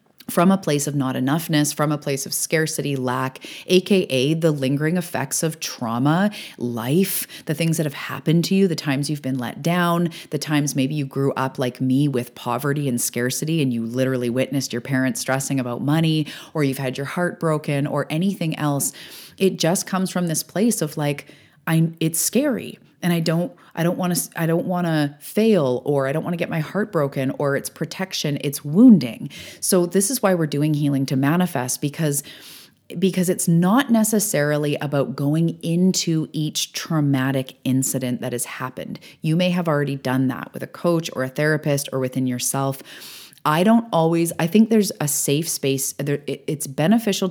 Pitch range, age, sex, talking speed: 135-175 Hz, 30-49, female, 190 wpm